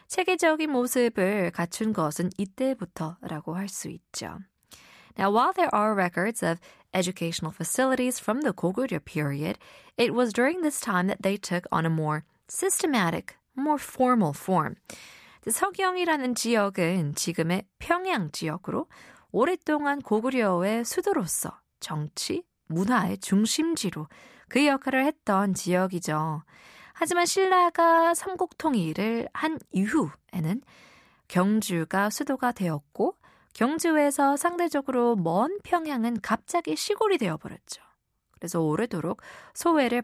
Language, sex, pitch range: Korean, female, 175-270 Hz